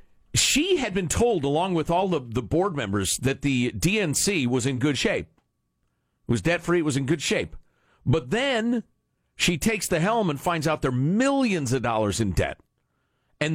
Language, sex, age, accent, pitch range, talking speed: English, male, 50-69, American, 120-180 Hz, 190 wpm